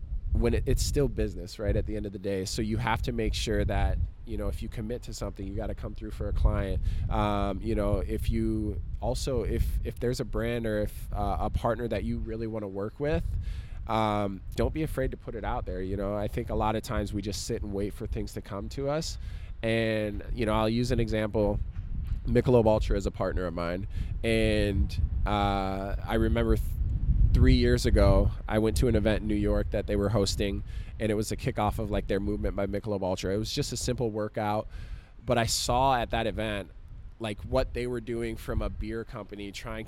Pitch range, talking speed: 100-110 Hz, 230 wpm